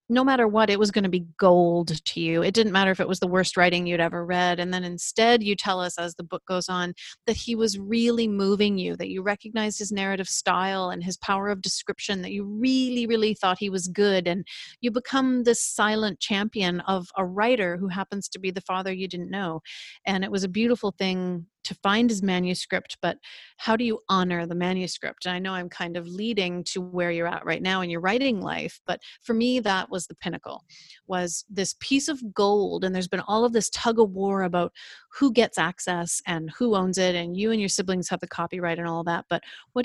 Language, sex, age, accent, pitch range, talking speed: English, female, 30-49, American, 180-215 Hz, 230 wpm